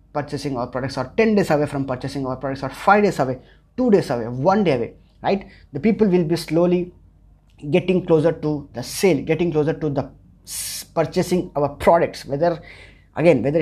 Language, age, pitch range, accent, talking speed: English, 20-39, 135-170 Hz, Indian, 185 wpm